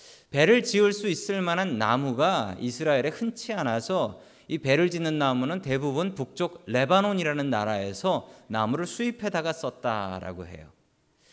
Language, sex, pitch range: Korean, male, 130-190 Hz